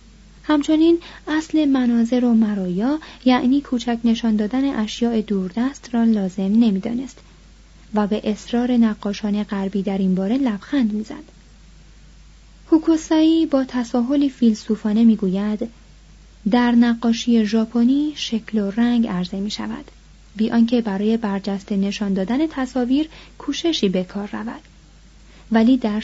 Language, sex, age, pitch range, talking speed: Persian, female, 30-49, 205-265 Hz, 115 wpm